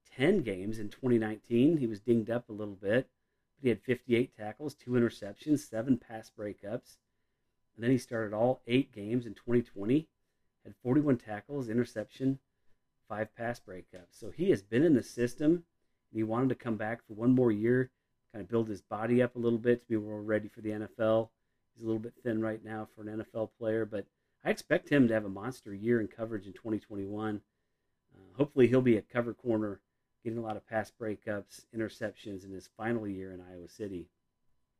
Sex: male